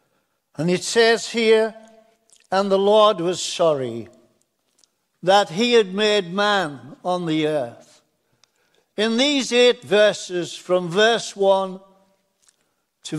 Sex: male